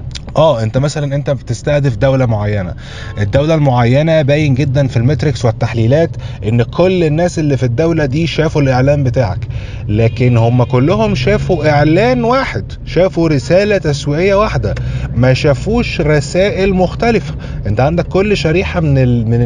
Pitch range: 125-160 Hz